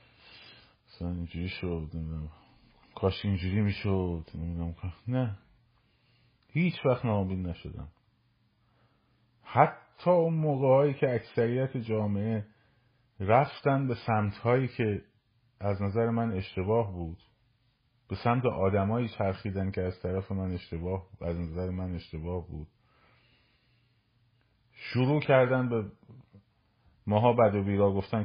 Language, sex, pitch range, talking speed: Persian, male, 95-120 Hz, 105 wpm